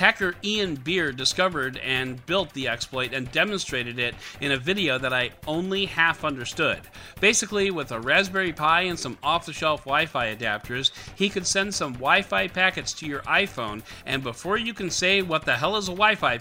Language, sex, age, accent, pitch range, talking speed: English, male, 40-59, American, 120-190 Hz, 180 wpm